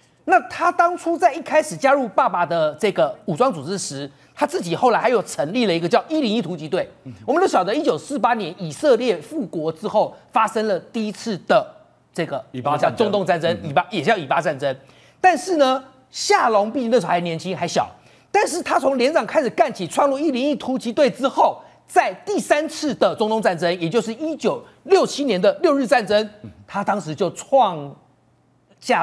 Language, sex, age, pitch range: Chinese, male, 40-59, 180-290 Hz